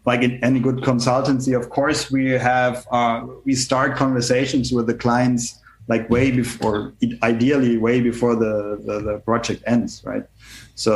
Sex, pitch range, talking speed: male, 110-125 Hz, 160 wpm